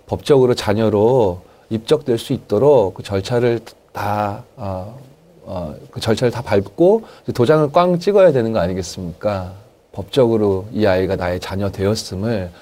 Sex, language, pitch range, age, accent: male, Korean, 95-130 Hz, 30-49, native